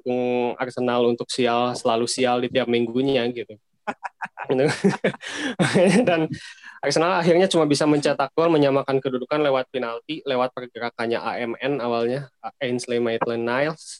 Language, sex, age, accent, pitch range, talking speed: Indonesian, male, 20-39, native, 120-135 Hz, 110 wpm